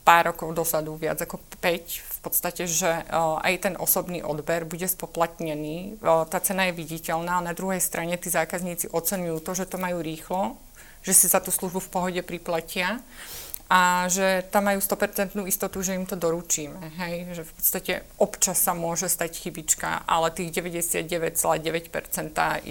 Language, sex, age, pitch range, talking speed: Slovak, female, 30-49, 165-195 Hz, 160 wpm